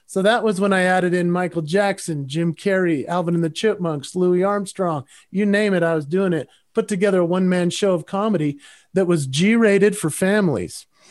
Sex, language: male, English